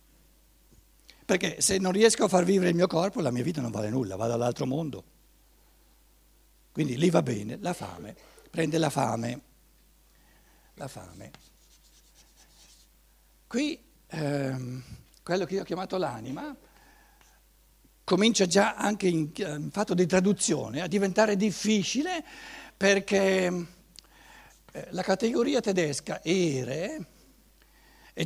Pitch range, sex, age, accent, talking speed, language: 150-205 Hz, male, 60-79, native, 115 wpm, Italian